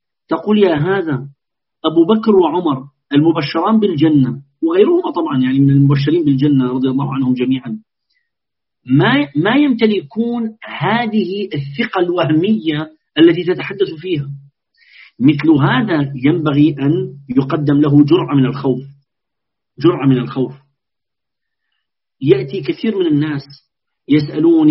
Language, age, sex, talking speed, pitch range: Arabic, 40-59, male, 105 wpm, 140-180 Hz